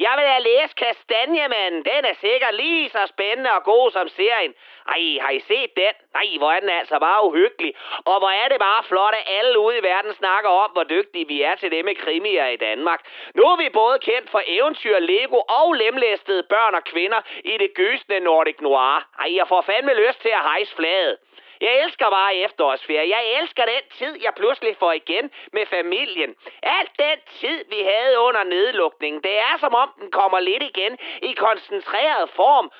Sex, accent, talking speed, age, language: male, native, 200 wpm, 30-49, Danish